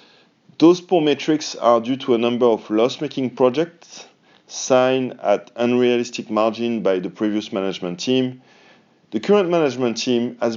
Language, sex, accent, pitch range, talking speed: English, male, French, 105-135 Hz, 140 wpm